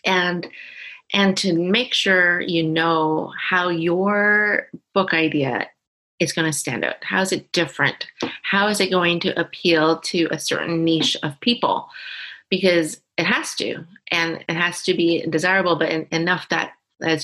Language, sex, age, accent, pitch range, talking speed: English, female, 30-49, American, 155-185 Hz, 165 wpm